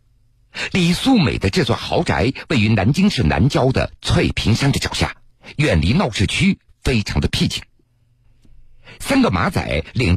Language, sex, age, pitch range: Chinese, male, 50-69, 110-135 Hz